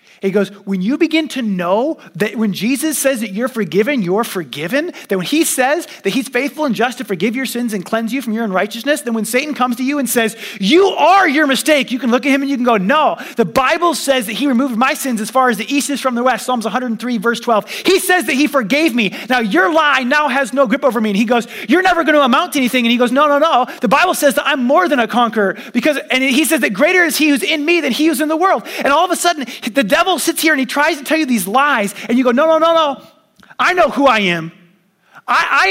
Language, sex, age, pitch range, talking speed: English, male, 30-49, 215-295 Hz, 280 wpm